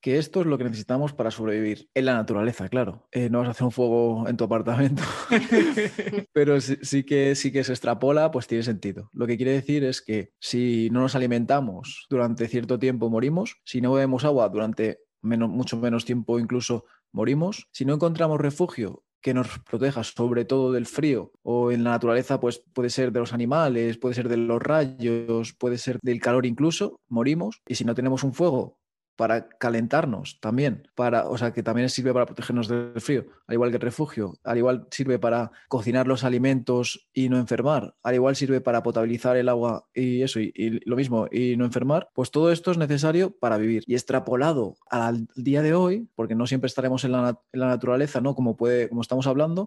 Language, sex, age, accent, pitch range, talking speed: Spanish, male, 20-39, Spanish, 120-135 Hz, 205 wpm